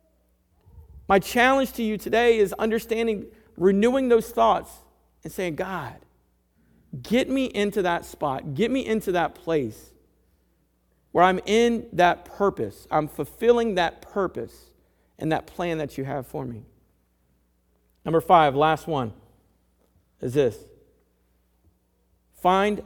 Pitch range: 120-200 Hz